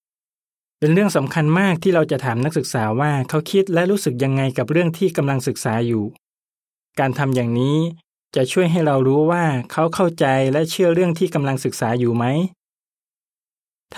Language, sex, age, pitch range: Thai, male, 20-39, 130-165 Hz